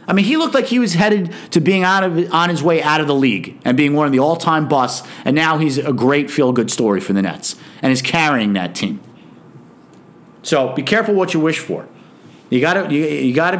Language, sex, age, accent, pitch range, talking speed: English, male, 50-69, American, 140-185 Hz, 235 wpm